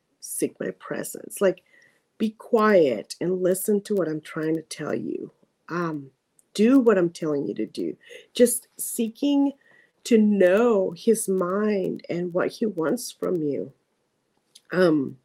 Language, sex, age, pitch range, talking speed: English, female, 40-59, 185-255 Hz, 140 wpm